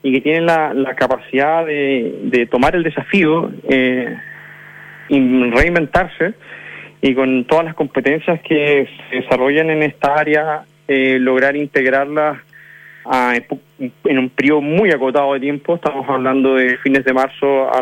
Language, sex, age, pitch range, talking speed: Spanish, male, 30-49, 130-160 Hz, 140 wpm